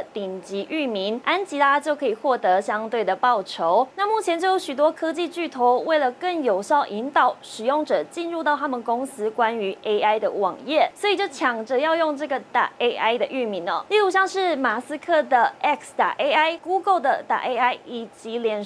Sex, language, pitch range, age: female, Chinese, 240-340 Hz, 20-39